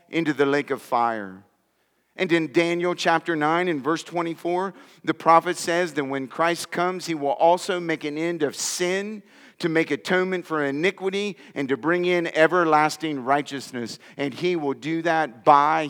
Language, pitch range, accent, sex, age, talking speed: English, 135-170 Hz, American, male, 40-59, 170 wpm